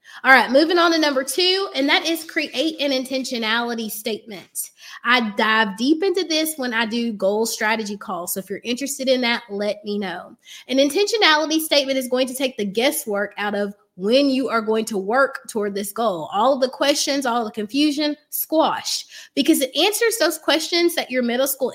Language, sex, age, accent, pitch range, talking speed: English, female, 20-39, American, 225-315 Hz, 195 wpm